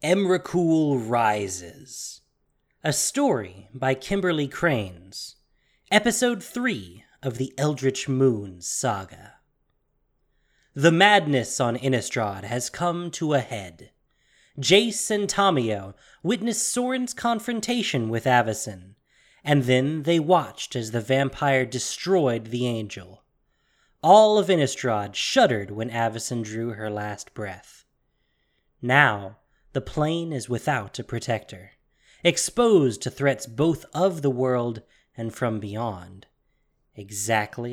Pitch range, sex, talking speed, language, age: 110-160 Hz, male, 110 wpm, English, 20-39